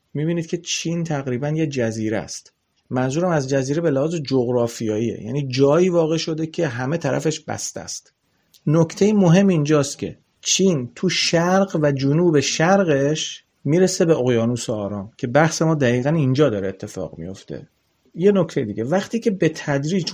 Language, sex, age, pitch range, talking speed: Persian, male, 40-59, 120-160 Hz, 150 wpm